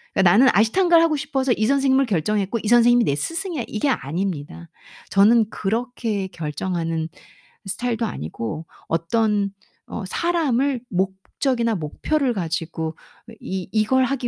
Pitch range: 175-245 Hz